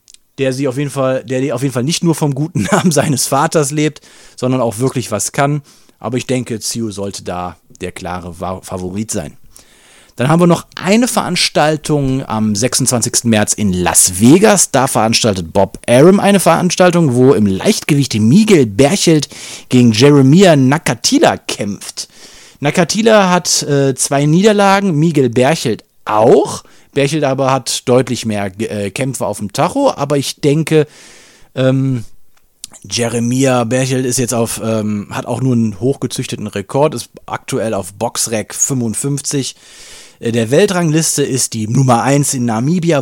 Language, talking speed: German, 145 wpm